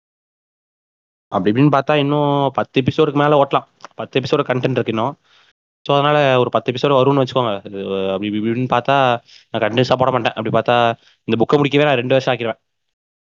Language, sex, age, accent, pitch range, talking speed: Tamil, male, 20-39, native, 115-140 Hz, 155 wpm